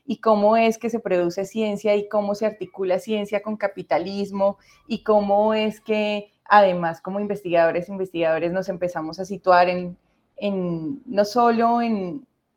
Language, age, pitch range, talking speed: Spanish, 20-39, 180-215 Hz, 150 wpm